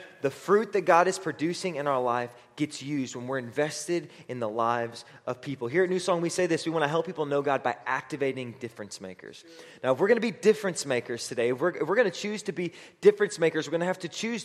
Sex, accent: male, American